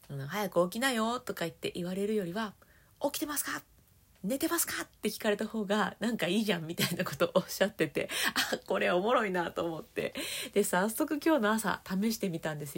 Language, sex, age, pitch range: Japanese, female, 40-59, 175-270 Hz